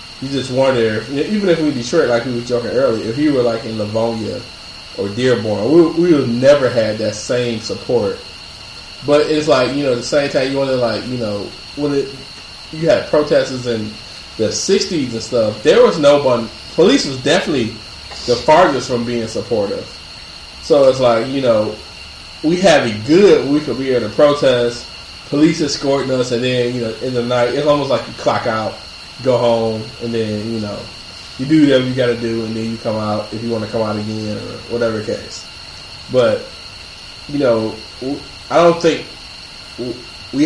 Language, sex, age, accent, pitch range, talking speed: English, male, 20-39, American, 110-140 Hz, 200 wpm